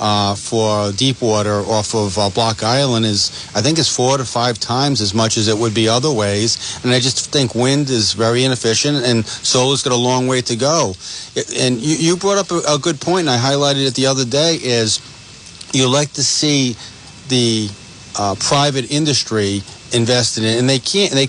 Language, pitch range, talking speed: English, 110-130 Hz, 210 wpm